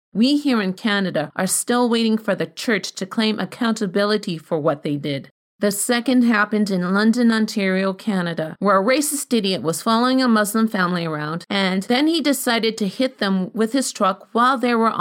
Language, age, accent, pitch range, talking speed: English, 40-59, American, 185-235 Hz, 190 wpm